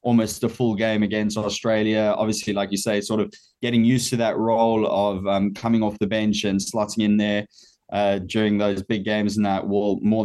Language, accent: English, Australian